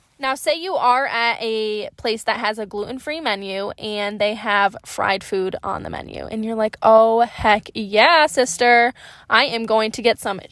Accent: American